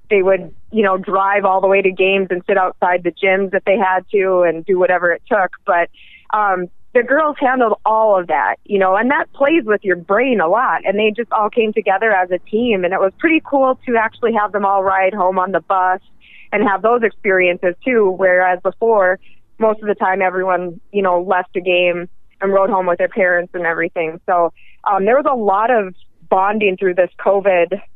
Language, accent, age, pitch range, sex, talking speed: English, American, 20-39, 180-215 Hz, female, 220 wpm